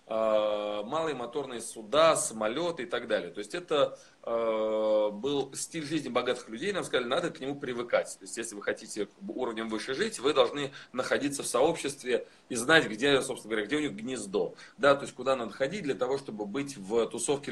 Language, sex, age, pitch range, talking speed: Russian, male, 20-39, 110-160 Hz, 190 wpm